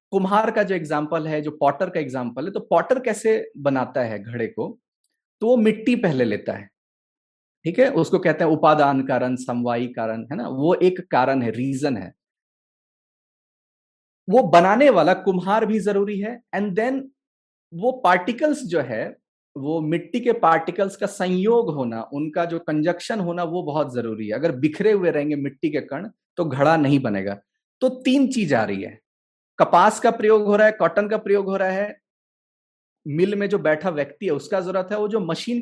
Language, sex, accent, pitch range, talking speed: English, male, Indian, 145-210 Hz, 135 wpm